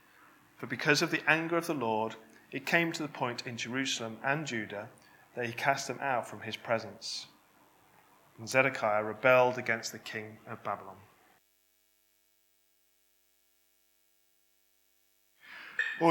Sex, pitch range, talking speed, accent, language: male, 110-140 Hz, 125 wpm, British, English